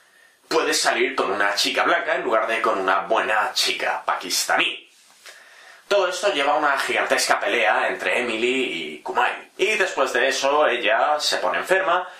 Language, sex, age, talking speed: Spanish, male, 30-49, 160 wpm